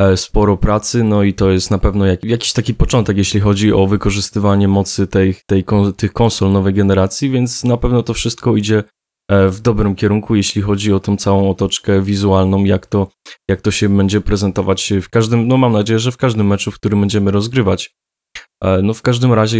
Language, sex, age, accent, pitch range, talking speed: Polish, male, 20-39, native, 100-115 Hz, 180 wpm